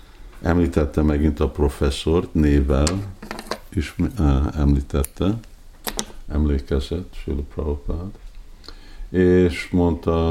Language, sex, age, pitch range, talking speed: Hungarian, male, 50-69, 70-90 Hz, 70 wpm